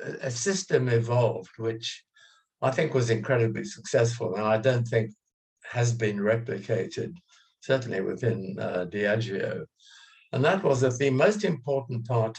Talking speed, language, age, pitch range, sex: 135 wpm, English, 60-79, 110-145 Hz, male